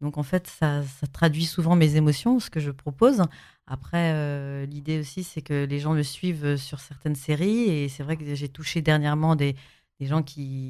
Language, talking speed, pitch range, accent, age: French, 210 wpm, 135-155 Hz, French, 30-49